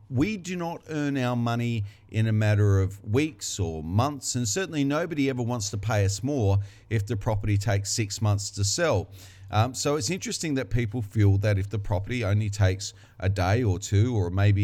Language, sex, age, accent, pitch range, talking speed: English, male, 40-59, Australian, 100-115 Hz, 200 wpm